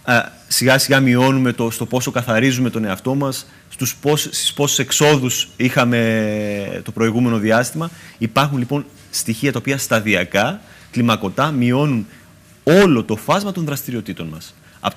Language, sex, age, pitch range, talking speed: Greek, male, 30-49, 110-130 Hz, 135 wpm